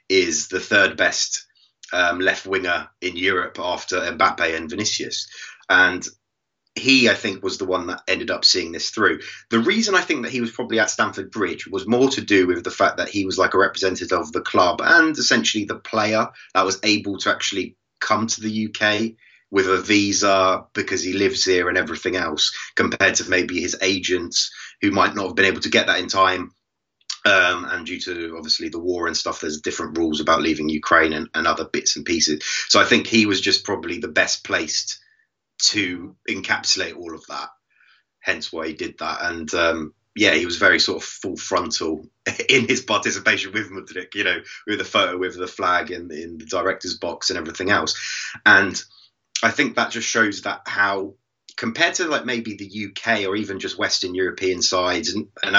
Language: English